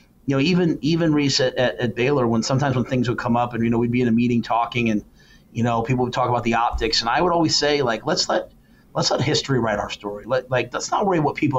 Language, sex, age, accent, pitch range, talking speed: English, male, 30-49, American, 115-135 Hz, 285 wpm